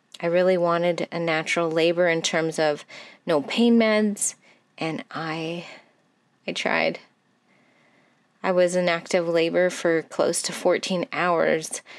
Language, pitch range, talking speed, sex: English, 165-200 Hz, 130 wpm, female